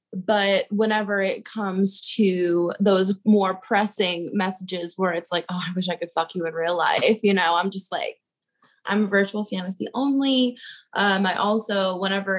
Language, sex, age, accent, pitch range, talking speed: English, female, 20-39, American, 190-220 Hz, 175 wpm